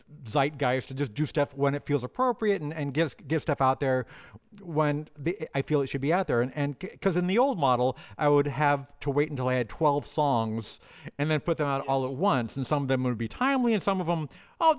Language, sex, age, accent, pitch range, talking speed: English, male, 50-69, American, 135-175 Hz, 250 wpm